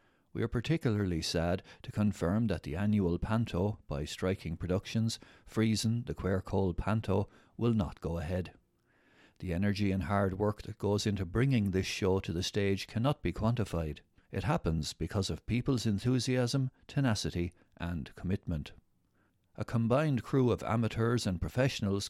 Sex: male